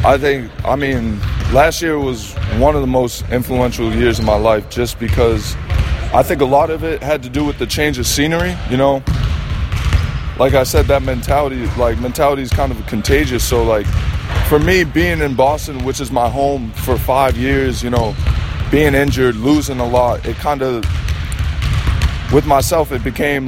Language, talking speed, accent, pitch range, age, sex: German, 185 wpm, American, 105-140 Hz, 20-39, male